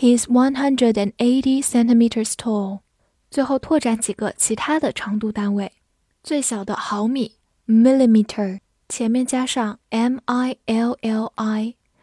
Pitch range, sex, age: 210-255 Hz, female, 10-29